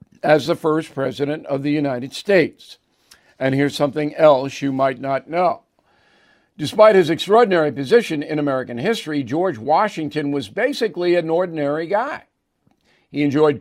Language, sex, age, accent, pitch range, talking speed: English, male, 50-69, American, 140-185 Hz, 140 wpm